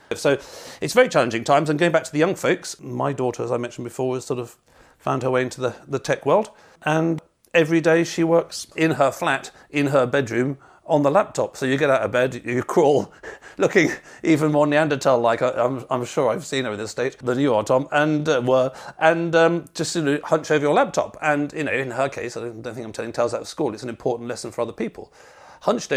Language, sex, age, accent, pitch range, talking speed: English, male, 50-69, British, 120-150 Hz, 235 wpm